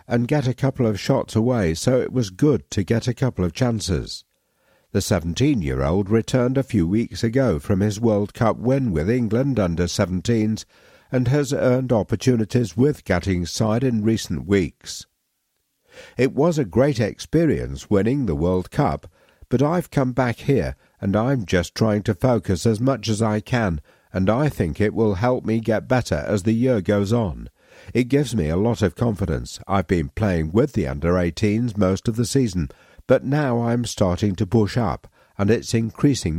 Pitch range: 95-125 Hz